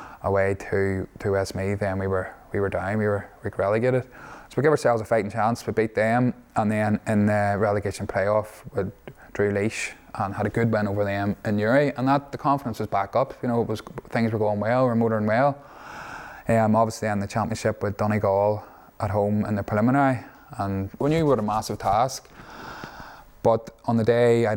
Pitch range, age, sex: 100-110 Hz, 20-39, male